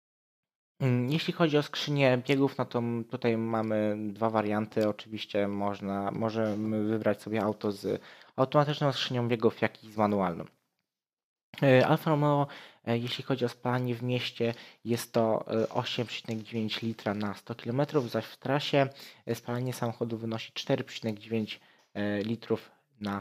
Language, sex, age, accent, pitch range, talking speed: Polish, male, 20-39, native, 110-130 Hz, 125 wpm